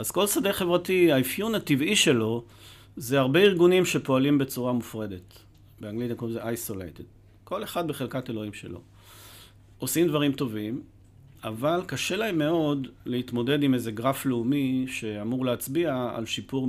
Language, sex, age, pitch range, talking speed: Hebrew, male, 40-59, 110-135 Hz, 135 wpm